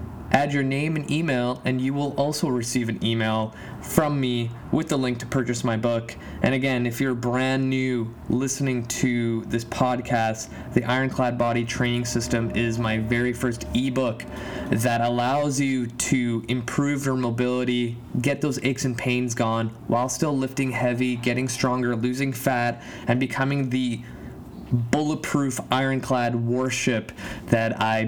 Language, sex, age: English, male, 20-39